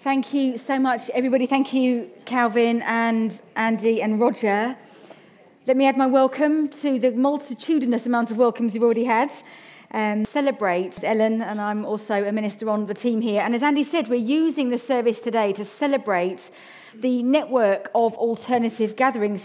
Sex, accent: female, British